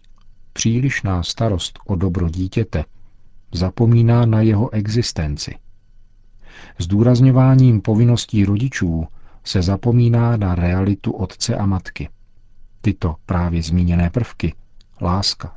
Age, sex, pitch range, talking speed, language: 50-69, male, 90-115 Hz, 95 wpm, Czech